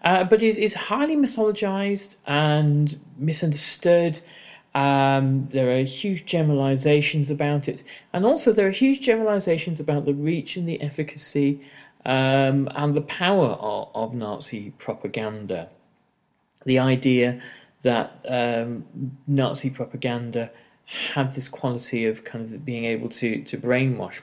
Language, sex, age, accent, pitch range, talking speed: English, male, 40-59, British, 115-170 Hz, 130 wpm